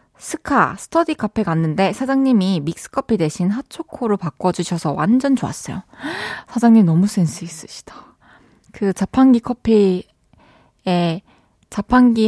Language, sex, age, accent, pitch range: Korean, female, 20-39, native, 185-260 Hz